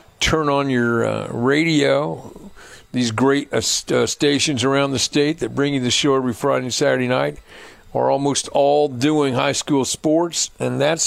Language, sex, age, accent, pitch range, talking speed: English, male, 50-69, American, 125-150 Hz, 175 wpm